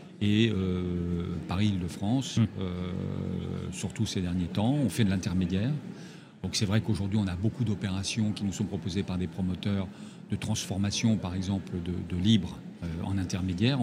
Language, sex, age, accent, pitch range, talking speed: French, male, 50-69, French, 95-115 Hz, 160 wpm